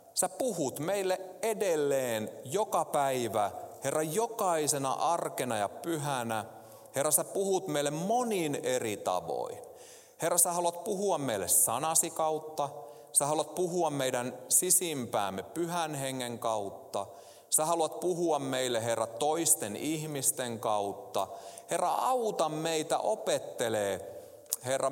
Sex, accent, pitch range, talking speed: male, native, 120-180 Hz, 110 wpm